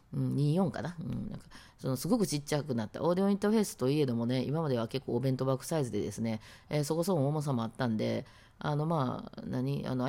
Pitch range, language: 120-165 Hz, Japanese